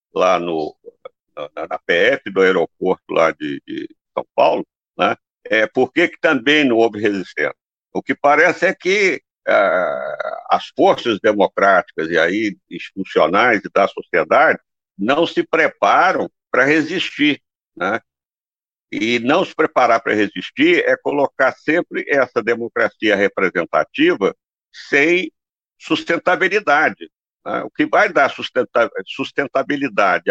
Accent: Brazilian